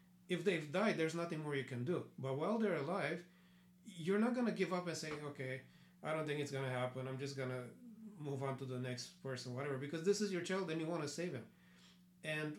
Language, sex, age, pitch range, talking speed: English, male, 40-59, 140-180 Hz, 250 wpm